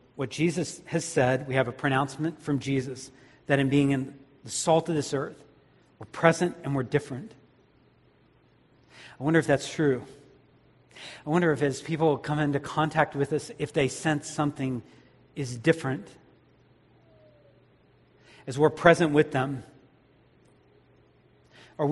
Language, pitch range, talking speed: English, 140-170 Hz, 140 wpm